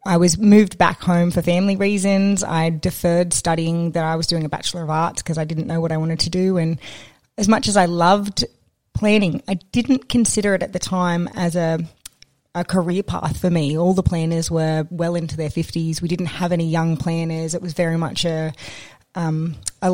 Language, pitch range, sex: English, 165-185 Hz, female